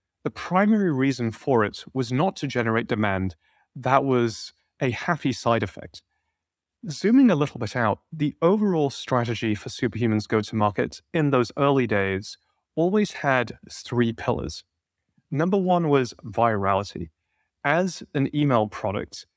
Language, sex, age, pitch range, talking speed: English, male, 30-49, 110-145 Hz, 140 wpm